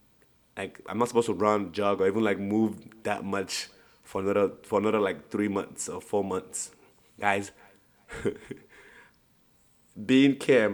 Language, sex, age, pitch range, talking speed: English, male, 20-39, 100-120 Hz, 145 wpm